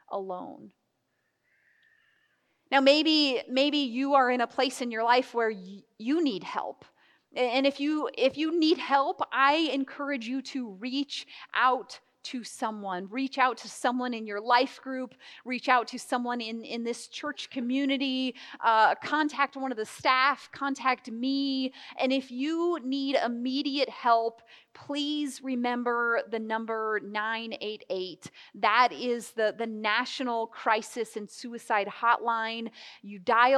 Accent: American